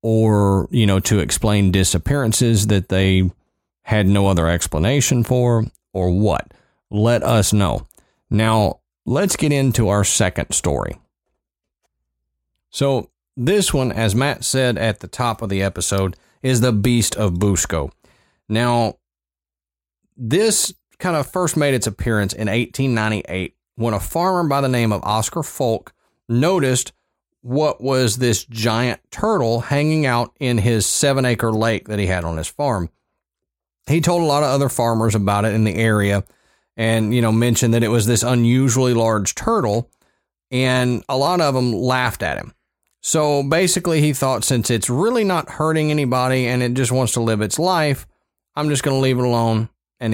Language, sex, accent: English, male, American